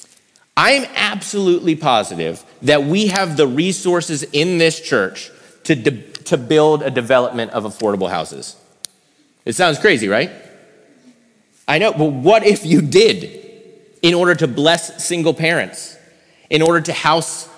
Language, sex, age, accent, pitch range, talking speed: English, male, 30-49, American, 145-195 Hz, 140 wpm